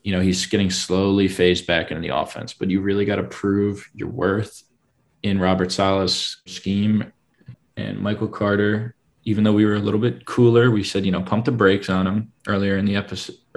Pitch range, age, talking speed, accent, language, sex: 90-100 Hz, 20-39, 205 wpm, American, English, male